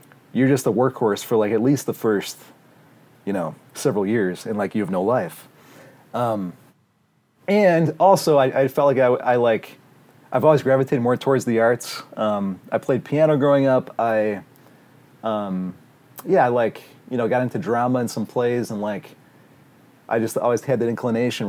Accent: American